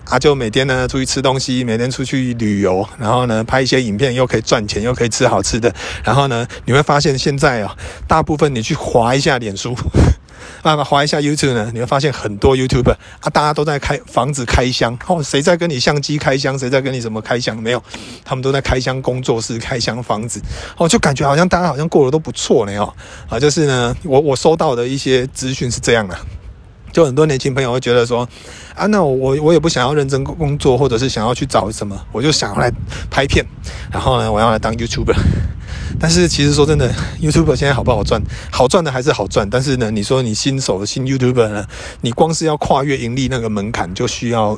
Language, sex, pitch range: Chinese, male, 110-140 Hz